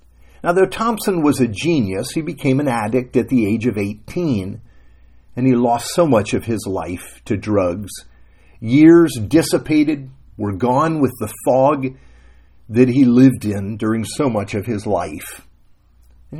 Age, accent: 50-69, American